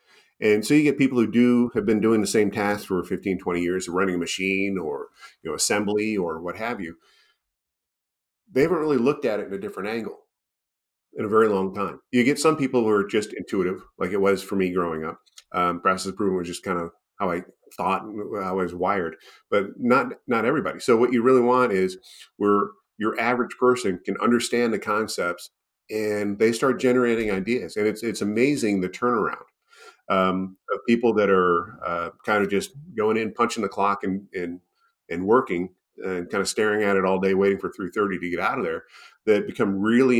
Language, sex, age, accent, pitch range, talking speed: English, male, 40-59, American, 95-115 Hz, 210 wpm